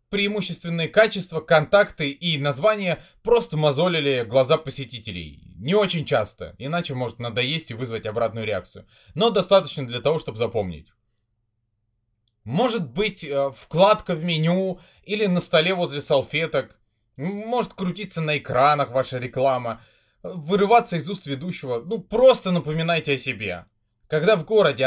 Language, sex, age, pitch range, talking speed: Russian, male, 20-39, 115-180 Hz, 130 wpm